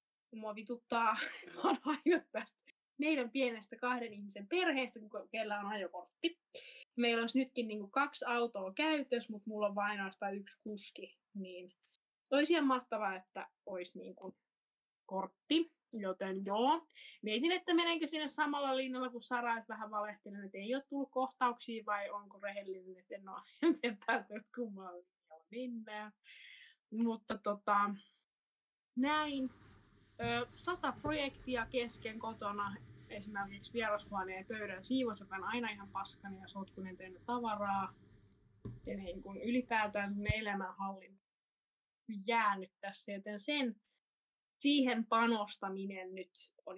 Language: Finnish